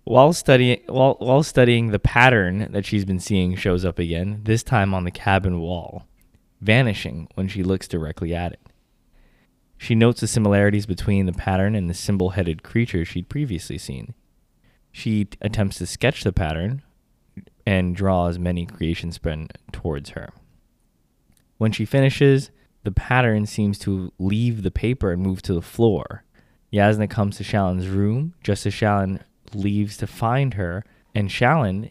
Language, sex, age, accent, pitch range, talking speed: English, male, 20-39, American, 90-110 Hz, 160 wpm